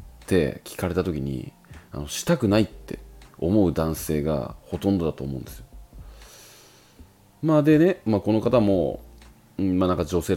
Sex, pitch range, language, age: male, 80-125 Hz, Japanese, 30-49